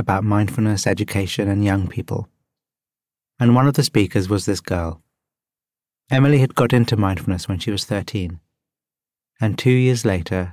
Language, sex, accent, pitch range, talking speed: English, male, British, 95-120 Hz, 155 wpm